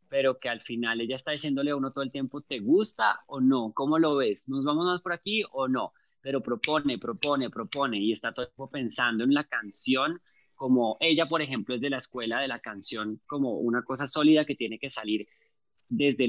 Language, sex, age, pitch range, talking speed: Spanish, male, 20-39, 120-150 Hz, 215 wpm